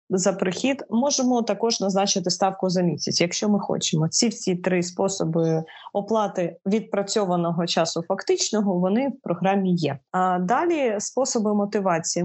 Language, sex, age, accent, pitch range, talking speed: Ukrainian, female, 20-39, native, 180-225 Hz, 130 wpm